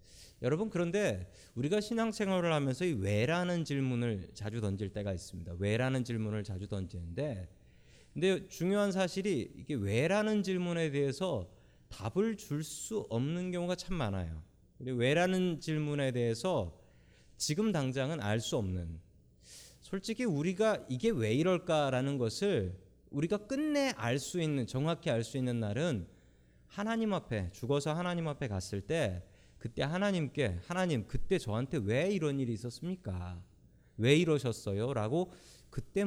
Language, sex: Korean, male